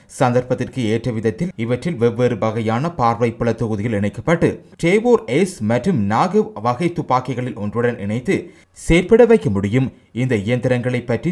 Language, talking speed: English, 115 wpm